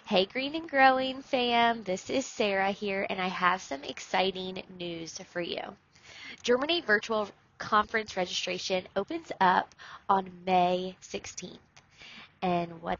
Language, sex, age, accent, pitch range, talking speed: English, female, 20-39, American, 185-245 Hz, 130 wpm